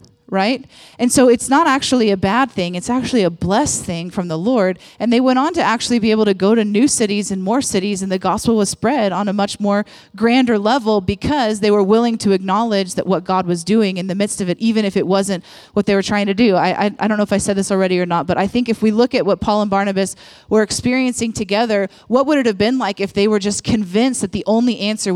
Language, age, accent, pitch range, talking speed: English, 30-49, American, 190-235 Hz, 265 wpm